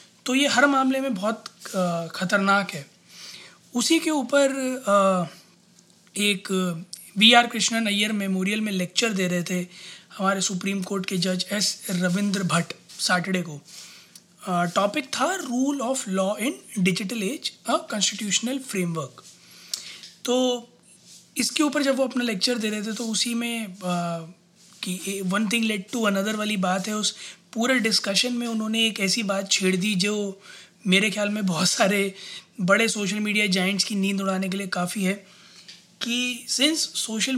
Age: 20-39